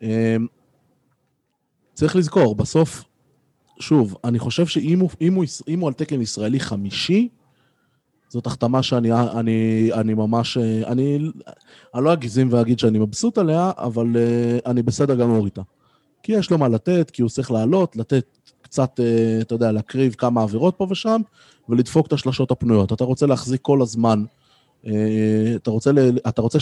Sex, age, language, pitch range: male, 20-39, Hebrew, 110-140 Hz